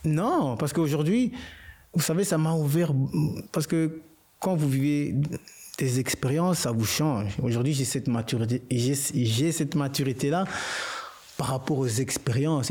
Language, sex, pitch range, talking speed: French, male, 120-150 Hz, 145 wpm